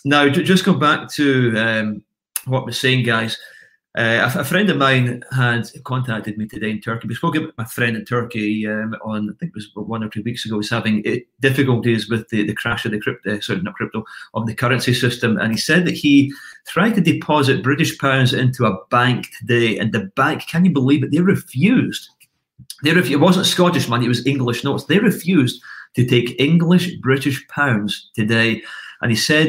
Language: English